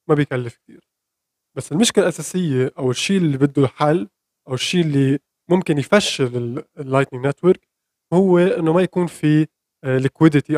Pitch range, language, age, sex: 135-165 Hz, Arabic, 20-39, male